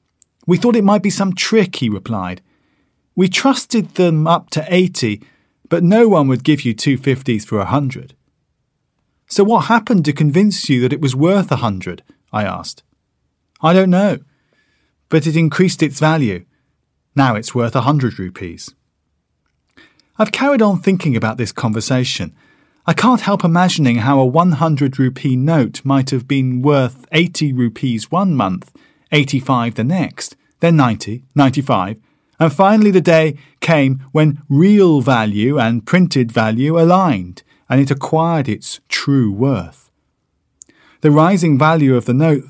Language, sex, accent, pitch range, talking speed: English, male, British, 120-165 Hz, 155 wpm